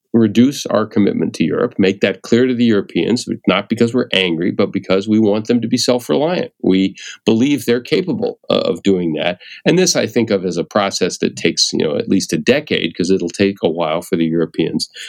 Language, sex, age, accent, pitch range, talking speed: English, male, 40-59, American, 95-120 Hz, 215 wpm